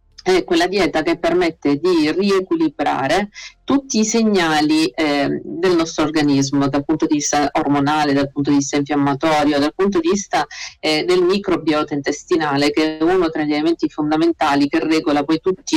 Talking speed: 165 wpm